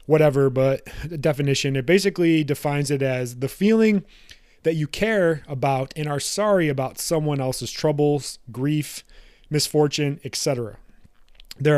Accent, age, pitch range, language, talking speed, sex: American, 30-49, 135-170 Hz, English, 130 wpm, male